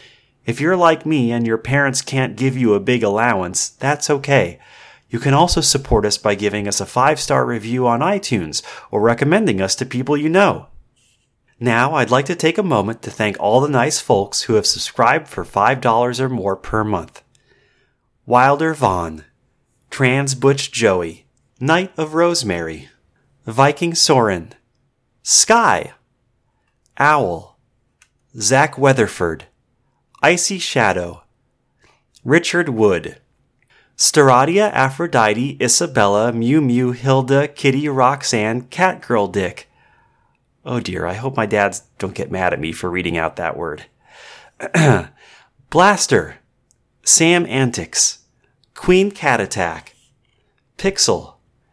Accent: American